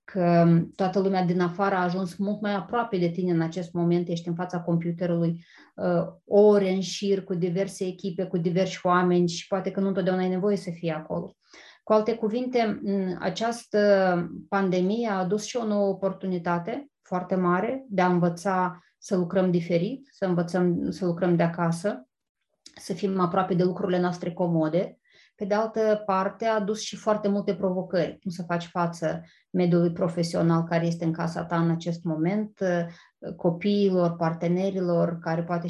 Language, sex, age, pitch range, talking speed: Romanian, female, 20-39, 170-195 Hz, 165 wpm